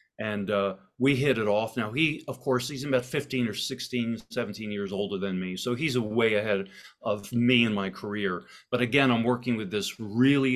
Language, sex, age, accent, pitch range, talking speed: English, male, 40-59, American, 100-125 Hz, 210 wpm